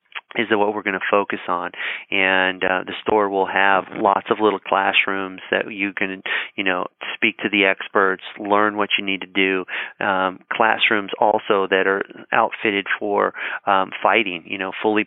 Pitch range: 95-100 Hz